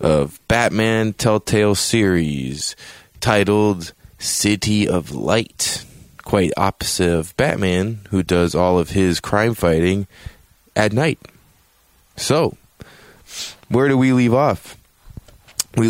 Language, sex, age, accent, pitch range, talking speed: English, male, 20-39, American, 85-105 Hz, 105 wpm